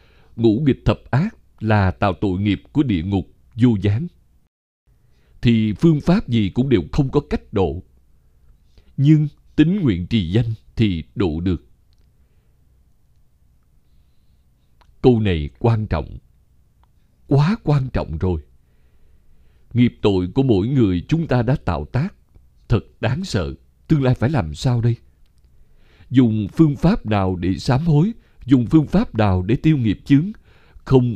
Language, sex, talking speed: Vietnamese, male, 145 wpm